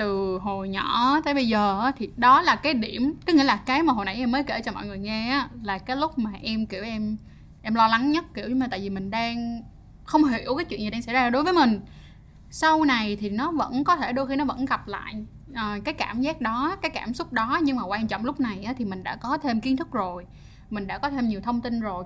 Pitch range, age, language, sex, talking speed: 210-275 Hz, 10-29, Vietnamese, female, 265 wpm